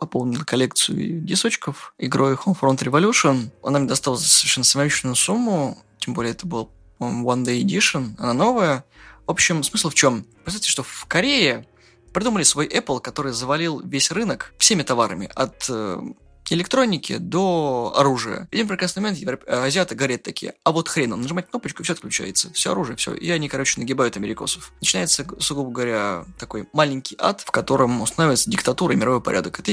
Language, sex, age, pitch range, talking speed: Russian, male, 20-39, 125-165 Hz, 165 wpm